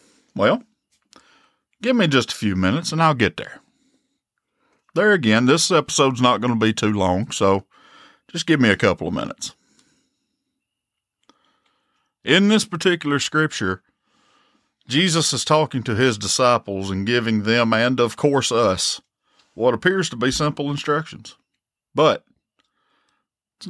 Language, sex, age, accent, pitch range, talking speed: English, male, 50-69, American, 110-180 Hz, 135 wpm